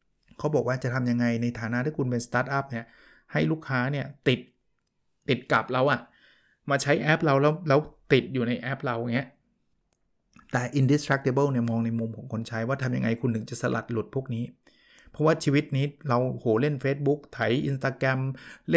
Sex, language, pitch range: male, Thai, 120-145 Hz